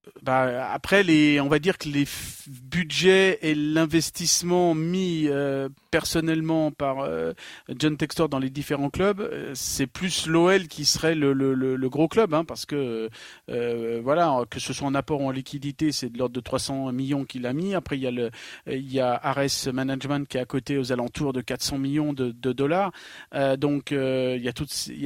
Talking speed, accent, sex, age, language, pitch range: 200 wpm, French, male, 40-59, French, 135-165 Hz